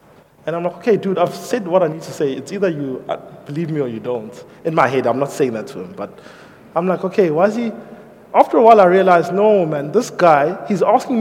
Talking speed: 250 wpm